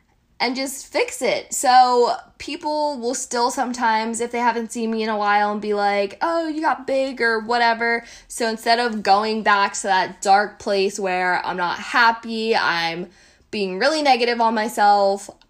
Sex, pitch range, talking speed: female, 200-245 Hz, 175 wpm